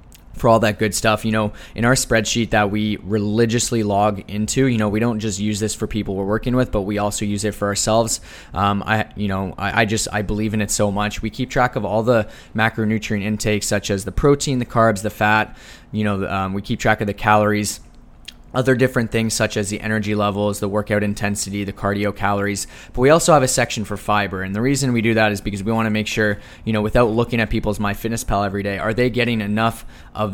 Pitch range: 105-115 Hz